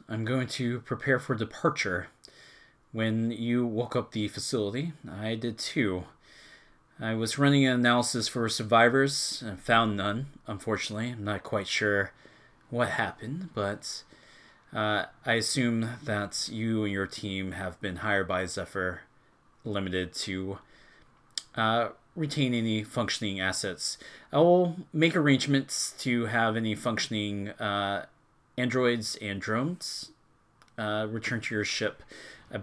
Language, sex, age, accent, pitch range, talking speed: English, male, 30-49, American, 100-125 Hz, 130 wpm